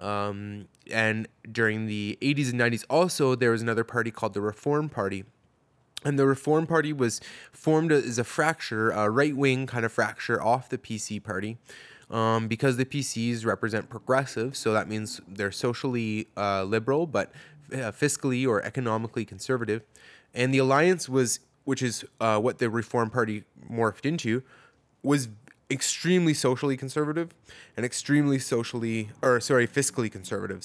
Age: 20-39